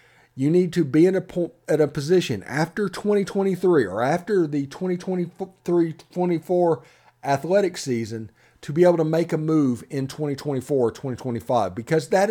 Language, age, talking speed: English, 40-59, 145 wpm